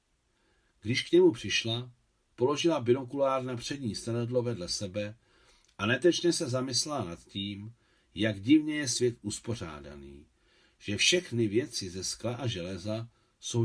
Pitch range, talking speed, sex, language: 100-125 Hz, 130 wpm, male, Czech